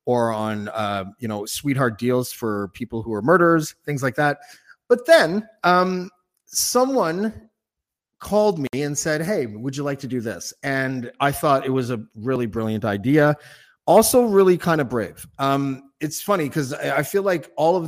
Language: English